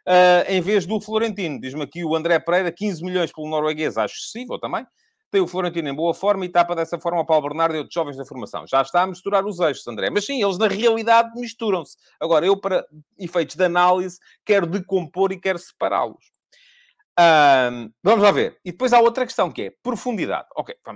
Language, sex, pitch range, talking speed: Portuguese, male, 160-215 Hz, 200 wpm